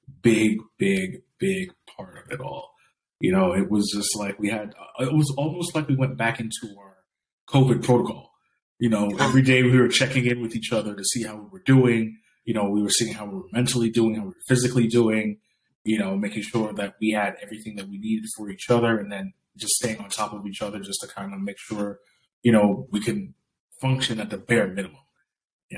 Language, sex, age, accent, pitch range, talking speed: English, male, 20-39, American, 105-135 Hz, 225 wpm